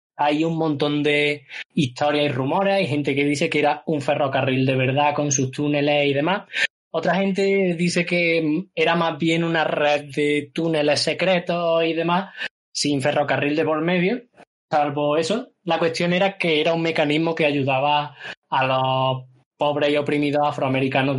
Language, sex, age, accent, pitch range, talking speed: Spanish, male, 20-39, Spanish, 145-170 Hz, 165 wpm